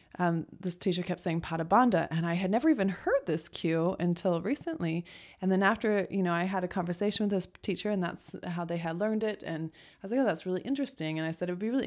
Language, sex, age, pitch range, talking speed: English, female, 20-39, 160-195 Hz, 255 wpm